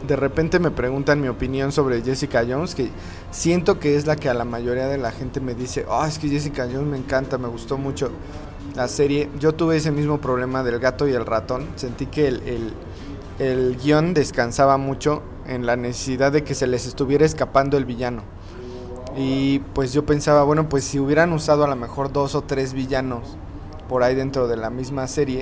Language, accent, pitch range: English, Mexican, 120-145 Hz